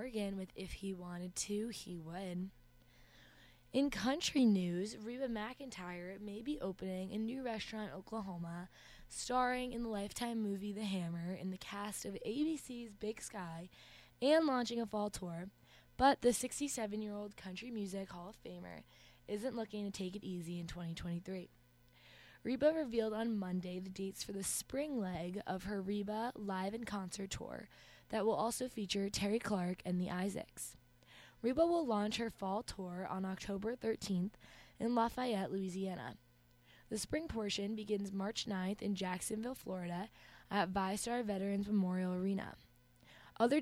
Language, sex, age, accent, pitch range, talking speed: English, female, 20-39, American, 185-225 Hz, 150 wpm